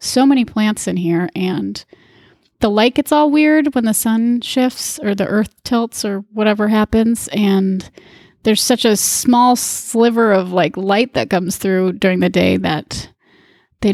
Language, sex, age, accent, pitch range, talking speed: English, female, 30-49, American, 190-235 Hz, 170 wpm